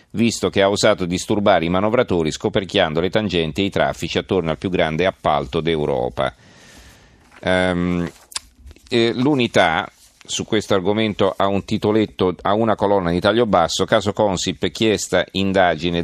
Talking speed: 140 wpm